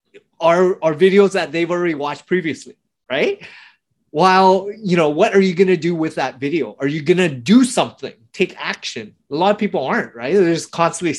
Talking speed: 205 wpm